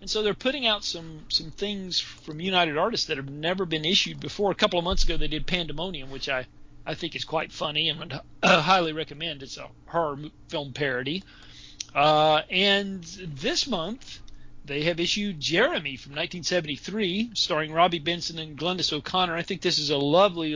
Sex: male